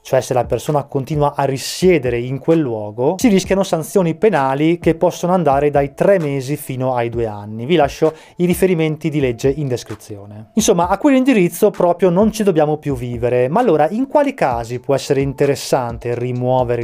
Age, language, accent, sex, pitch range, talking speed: 20-39, Italian, native, male, 130-180 Hz, 180 wpm